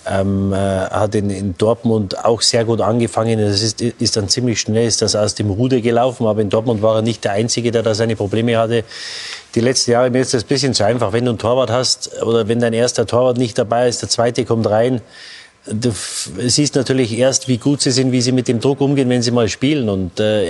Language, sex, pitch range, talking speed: German, male, 115-140 Hz, 240 wpm